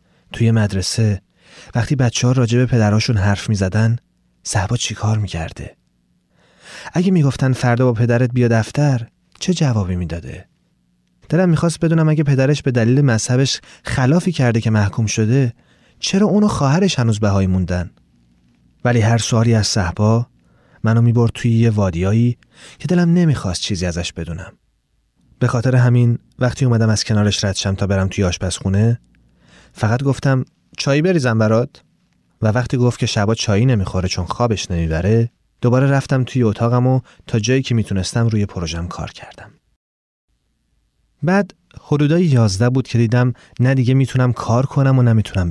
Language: Persian